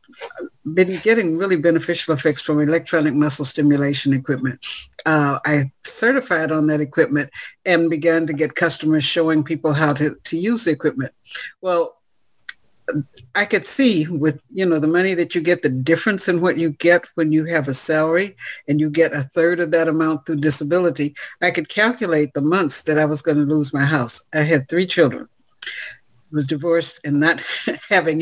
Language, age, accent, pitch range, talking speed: English, 60-79, American, 145-170 Hz, 180 wpm